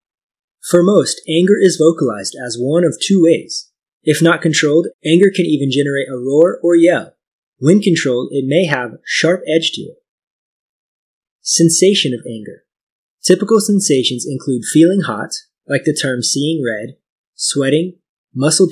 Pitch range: 140-175 Hz